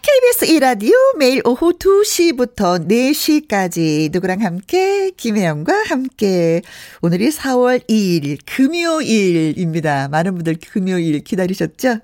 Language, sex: Korean, female